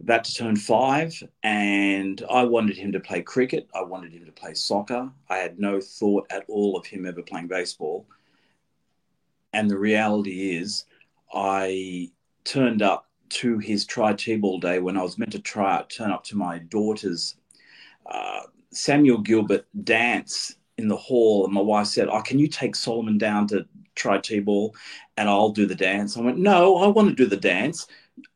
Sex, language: male, English